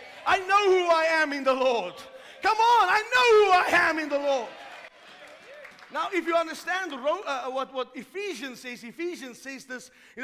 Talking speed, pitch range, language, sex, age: 195 wpm, 255-310 Hz, English, male, 30-49